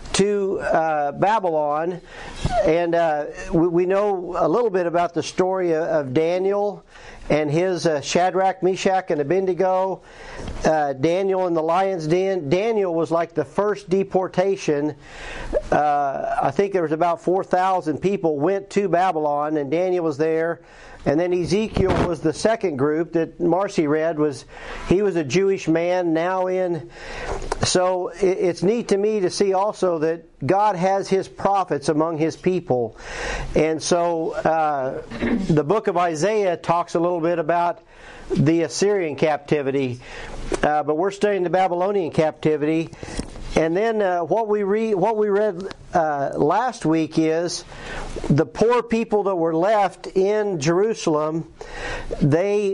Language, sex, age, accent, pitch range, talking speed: English, male, 50-69, American, 160-195 Hz, 145 wpm